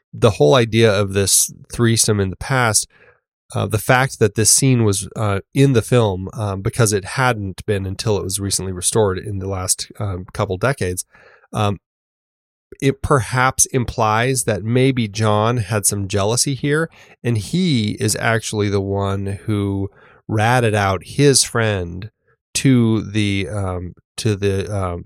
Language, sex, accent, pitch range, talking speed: English, male, American, 100-120 Hz, 150 wpm